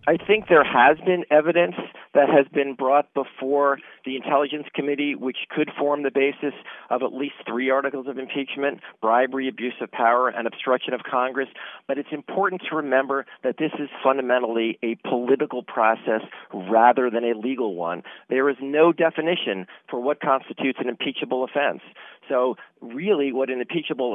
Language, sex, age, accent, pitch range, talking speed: English, male, 40-59, American, 120-145 Hz, 165 wpm